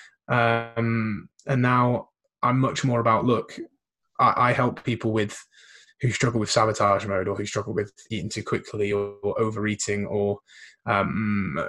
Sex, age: male, 20-39